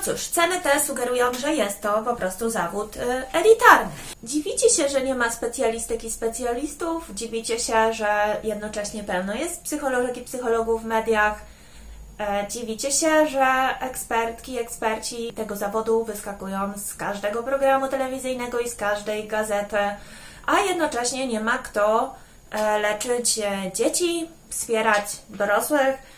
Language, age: Polish, 20-39